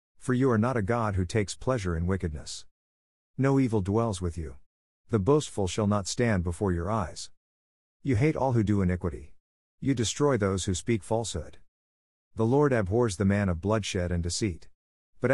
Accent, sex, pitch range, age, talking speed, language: American, male, 80-115 Hz, 50-69, 180 wpm, English